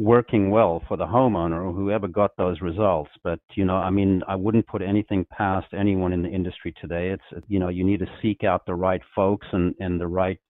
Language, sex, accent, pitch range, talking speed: English, male, American, 90-110 Hz, 230 wpm